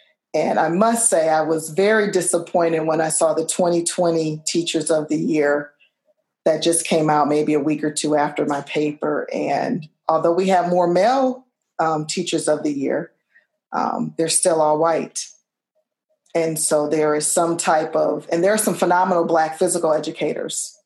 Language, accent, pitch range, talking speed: English, American, 155-180 Hz, 175 wpm